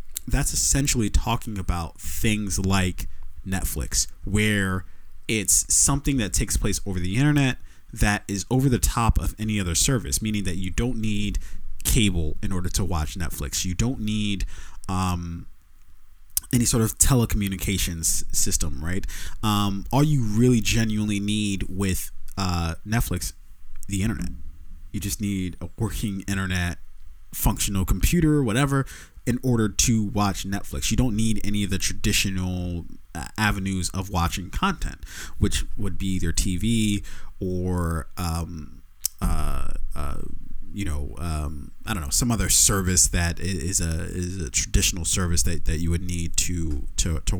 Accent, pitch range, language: American, 80-105 Hz, English